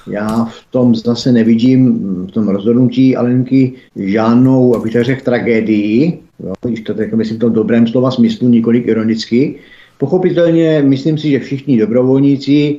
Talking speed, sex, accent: 150 wpm, male, native